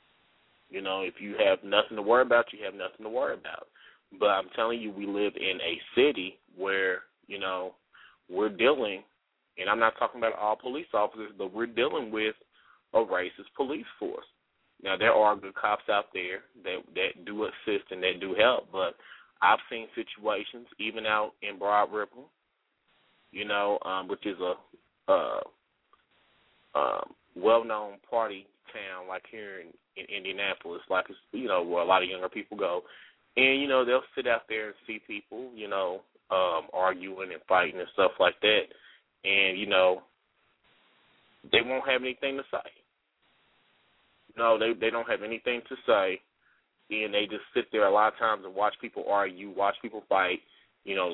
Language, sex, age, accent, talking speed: English, male, 20-39, American, 175 wpm